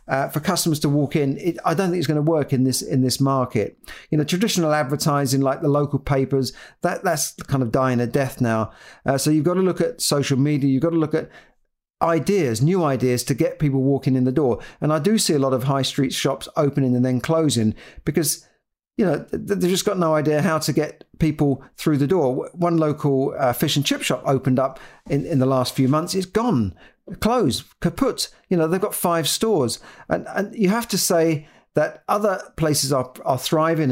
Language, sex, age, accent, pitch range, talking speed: English, male, 50-69, British, 130-165 Hz, 220 wpm